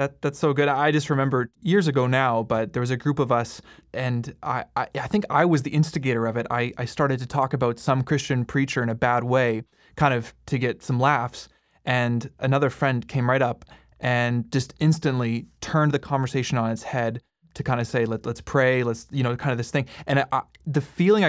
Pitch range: 125-150 Hz